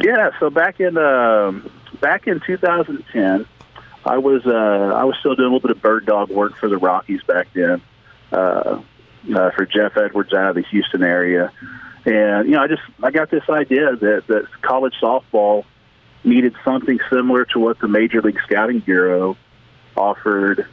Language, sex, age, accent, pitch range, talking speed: English, male, 40-59, American, 100-125 Hz, 175 wpm